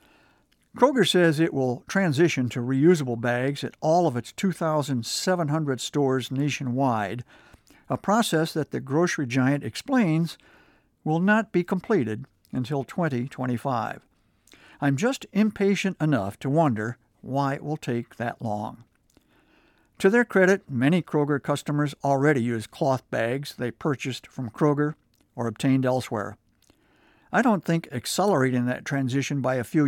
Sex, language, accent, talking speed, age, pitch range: male, English, American, 135 wpm, 60-79, 120-165 Hz